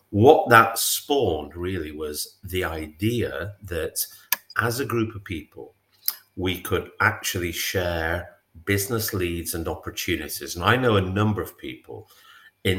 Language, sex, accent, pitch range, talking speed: English, male, British, 90-115 Hz, 135 wpm